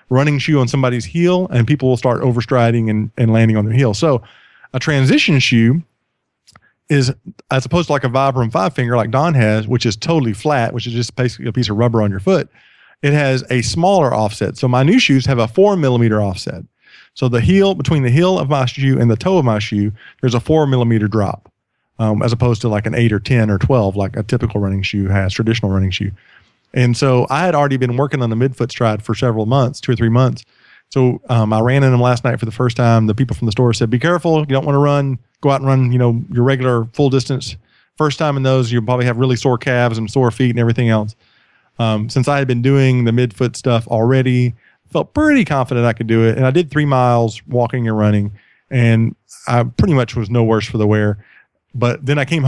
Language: English